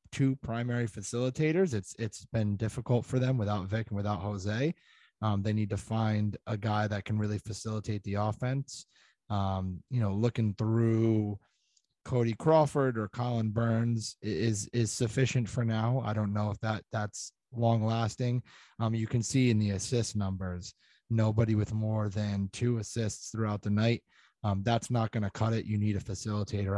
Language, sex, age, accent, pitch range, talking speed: English, male, 20-39, American, 105-120 Hz, 175 wpm